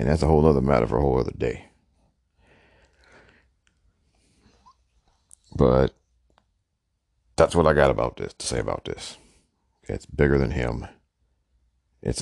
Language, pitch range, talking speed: English, 65-90 Hz, 135 wpm